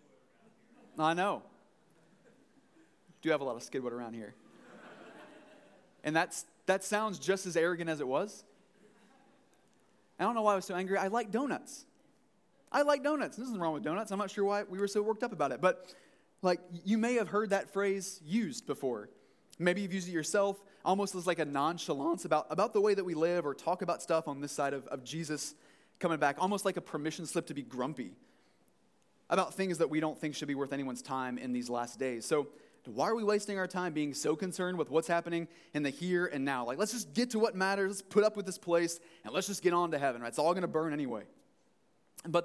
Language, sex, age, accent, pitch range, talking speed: English, male, 30-49, American, 155-205 Hz, 220 wpm